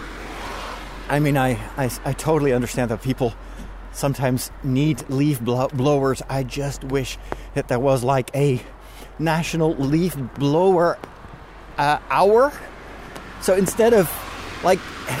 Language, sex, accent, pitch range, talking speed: English, male, American, 130-170 Hz, 115 wpm